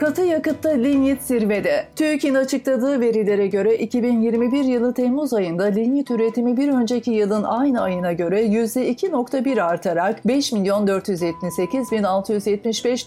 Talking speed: 105 wpm